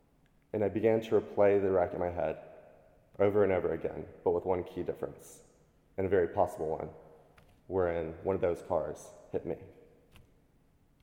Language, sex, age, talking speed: English, male, 20-39, 175 wpm